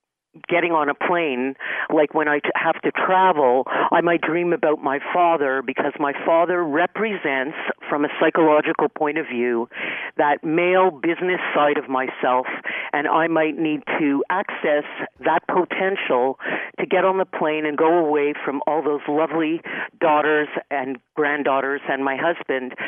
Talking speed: 150 wpm